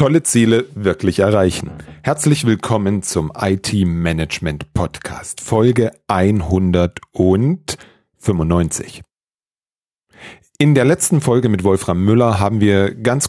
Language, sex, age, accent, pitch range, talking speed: German, male, 40-59, German, 90-115 Hz, 90 wpm